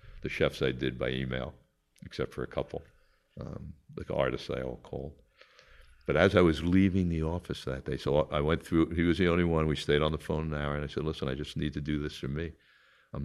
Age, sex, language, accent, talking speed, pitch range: 60-79, male, English, American, 245 wpm, 70-85 Hz